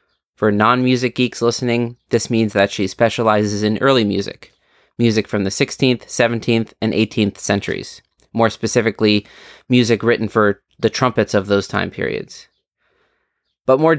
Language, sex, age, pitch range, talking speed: English, male, 30-49, 105-120 Hz, 140 wpm